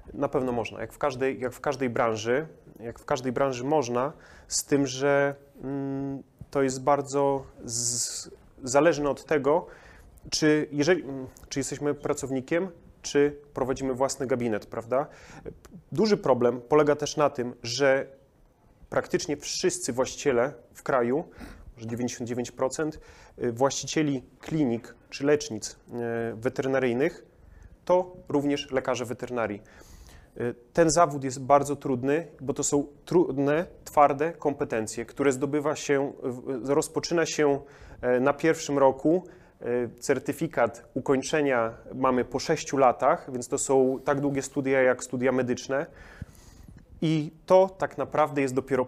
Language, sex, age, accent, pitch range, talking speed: Polish, male, 30-49, native, 130-145 Hz, 115 wpm